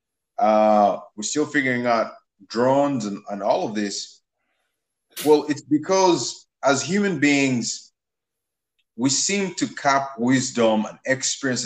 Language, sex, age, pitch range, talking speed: English, male, 20-39, 110-135 Hz, 125 wpm